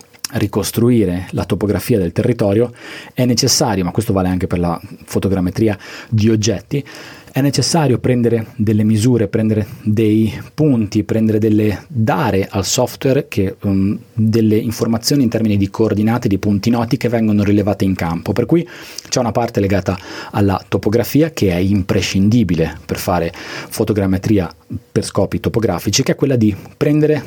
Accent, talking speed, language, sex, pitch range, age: native, 145 wpm, Italian, male, 100-130 Hz, 30-49